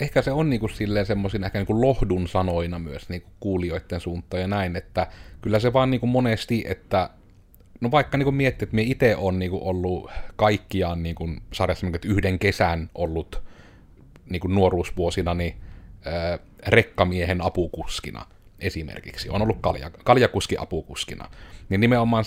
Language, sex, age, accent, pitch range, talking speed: Finnish, male, 30-49, native, 85-100 Hz, 125 wpm